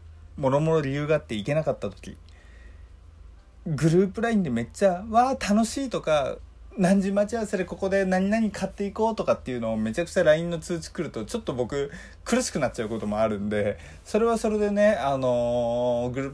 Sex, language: male, Japanese